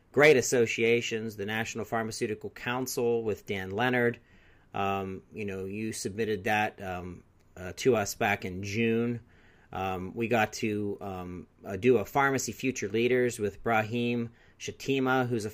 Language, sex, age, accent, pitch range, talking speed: English, male, 40-59, American, 100-120 Hz, 145 wpm